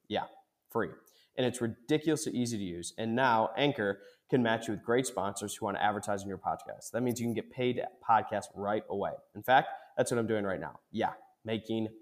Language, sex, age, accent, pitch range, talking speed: English, male, 20-39, American, 105-125 Hz, 220 wpm